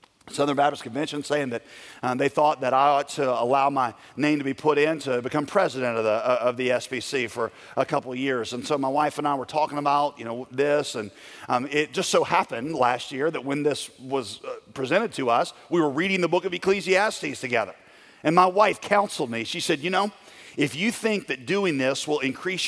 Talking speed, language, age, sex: 225 wpm, English, 40-59, male